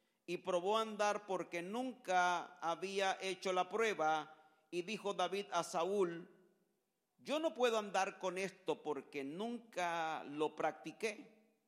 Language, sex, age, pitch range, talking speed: Spanish, male, 50-69, 160-215 Hz, 130 wpm